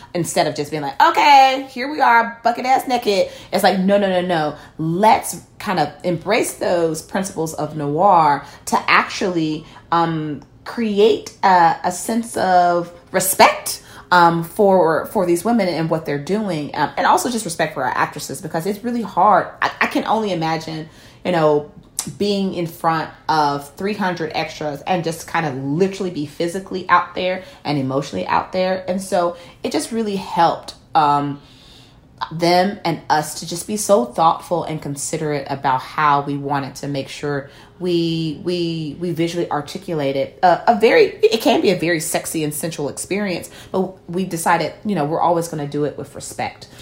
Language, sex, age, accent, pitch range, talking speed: English, female, 30-49, American, 150-185 Hz, 175 wpm